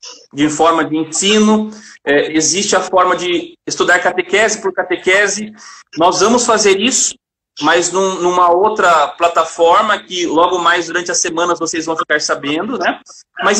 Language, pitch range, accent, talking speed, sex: Portuguese, 175-230 Hz, Brazilian, 140 wpm, male